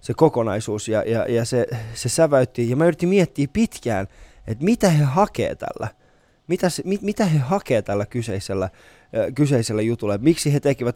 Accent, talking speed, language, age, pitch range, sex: native, 170 wpm, Finnish, 20-39, 110-140 Hz, male